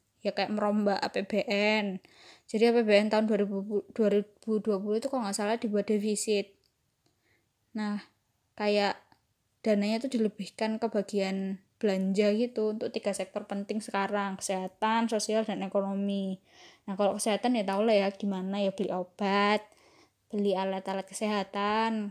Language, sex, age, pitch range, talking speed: Indonesian, female, 10-29, 200-225 Hz, 125 wpm